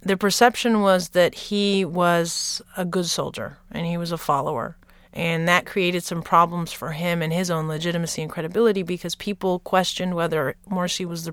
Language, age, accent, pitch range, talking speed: English, 30-49, American, 165-190 Hz, 180 wpm